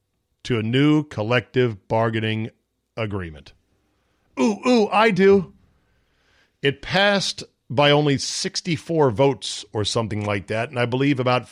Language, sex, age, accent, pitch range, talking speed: English, male, 50-69, American, 105-150 Hz, 125 wpm